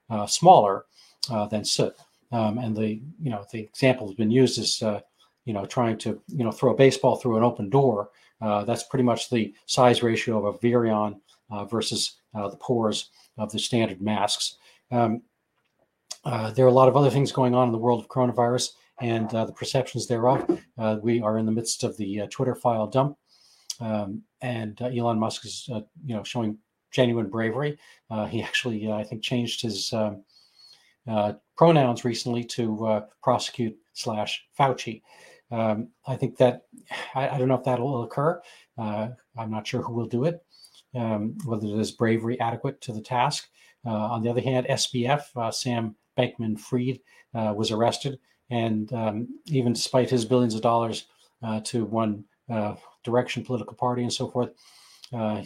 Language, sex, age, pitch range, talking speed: English, male, 40-59, 110-125 Hz, 175 wpm